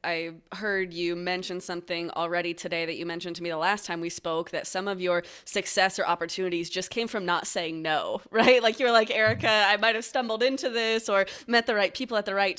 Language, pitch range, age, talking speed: English, 155-185 Hz, 20-39, 230 wpm